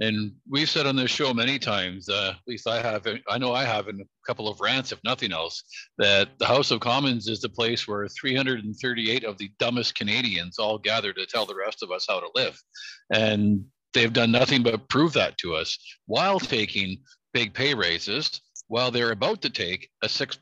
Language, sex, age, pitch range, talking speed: English, male, 50-69, 110-135 Hz, 205 wpm